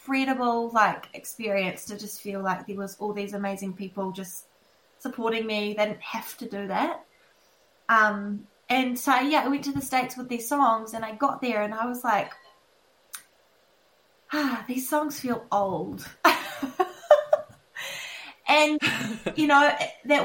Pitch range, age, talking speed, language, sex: 200-255 Hz, 20-39, 150 wpm, English, female